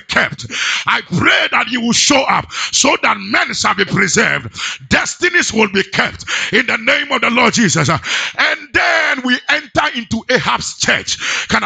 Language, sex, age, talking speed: English, male, 50-69, 170 wpm